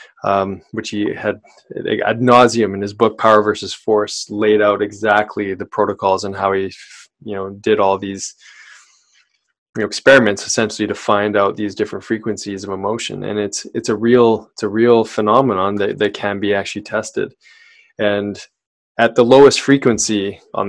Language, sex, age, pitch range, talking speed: English, male, 20-39, 100-115 Hz, 165 wpm